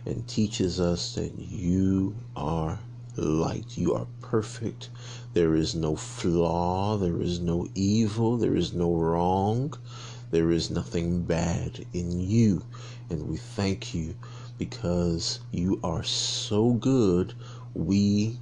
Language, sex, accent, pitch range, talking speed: English, male, American, 90-120 Hz, 125 wpm